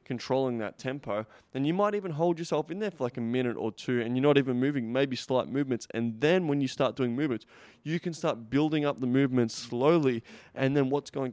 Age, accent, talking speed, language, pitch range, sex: 20-39, Australian, 235 wpm, English, 115-135 Hz, male